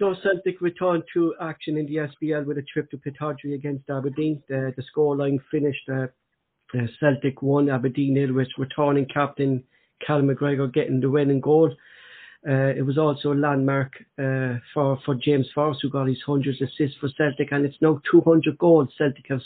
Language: English